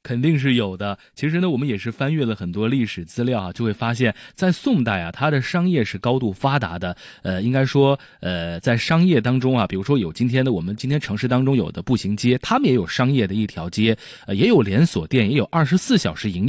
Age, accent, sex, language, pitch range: 20-39, native, male, Chinese, 110-165 Hz